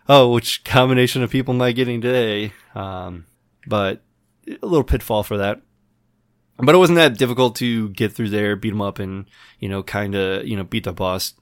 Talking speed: 200 wpm